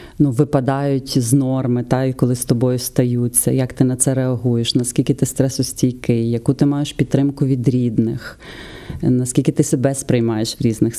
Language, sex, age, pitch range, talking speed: Ukrainian, female, 30-49, 130-155 Hz, 160 wpm